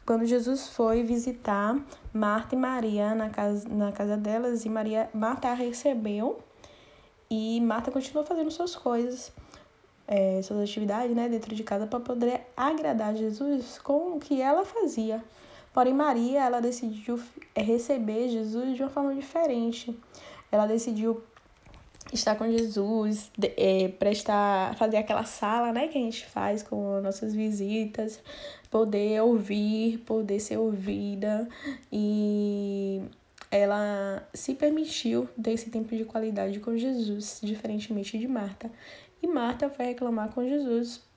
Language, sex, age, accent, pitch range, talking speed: Portuguese, female, 10-29, Brazilian, 215-270 Hz, 135 wpm